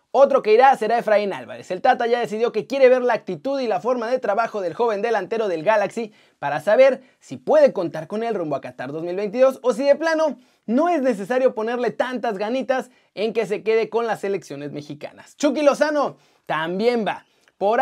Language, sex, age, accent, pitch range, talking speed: Spanish, male, 30-49, Mexican, 195-270 Hz, 200 wpm